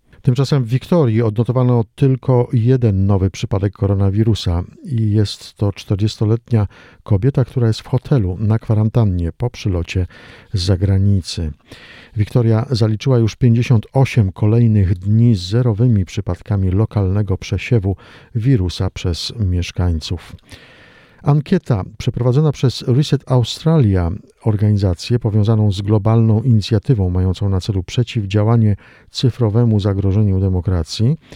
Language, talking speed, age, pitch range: Polish, 105 wpm, 50-69, 100-125 Hz